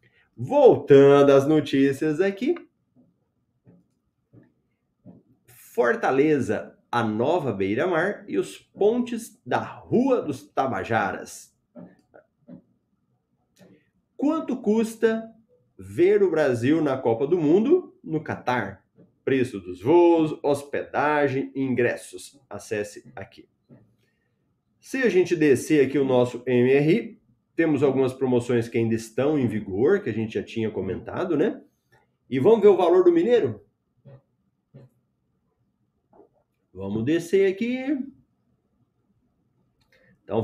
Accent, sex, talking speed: Brazilian, male, 100 wpm